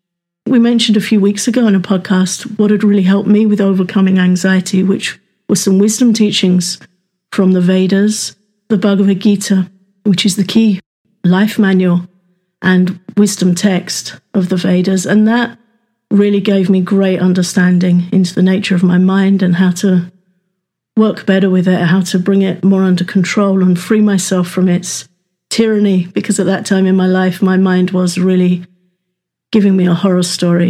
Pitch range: 185-205 Hz